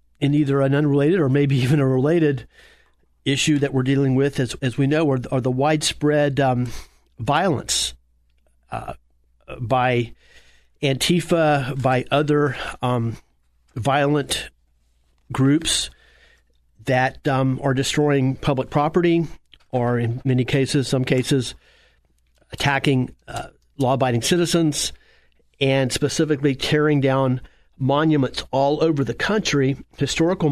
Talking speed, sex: 115 wpm, male